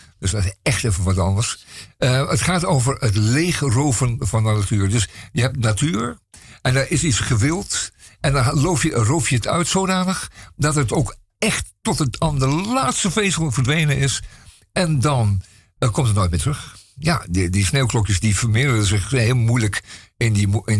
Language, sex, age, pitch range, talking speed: Dutch, male, 50-69, 105-145 Hz, 190 wpm